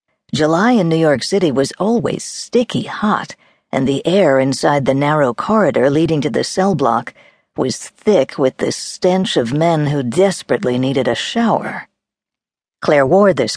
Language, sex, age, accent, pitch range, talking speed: English, female, 50-69, American, 130-170 Hz, 160 wpm